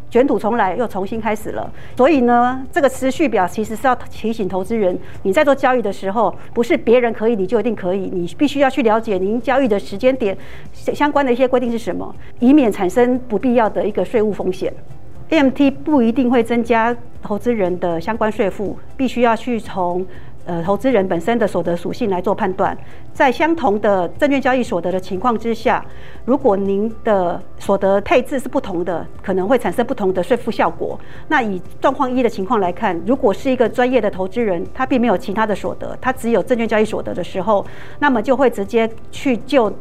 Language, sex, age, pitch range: Chinese, female, 50-69, 195-255 Hz